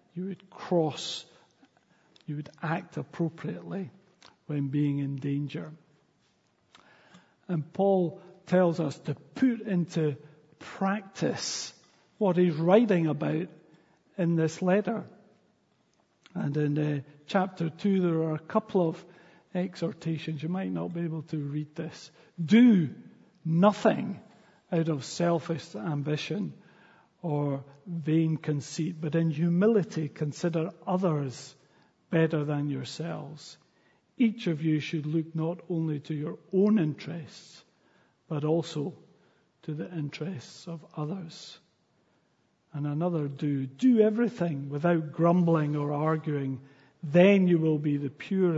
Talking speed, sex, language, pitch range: 115 wpm, male, English, 150-180 Hz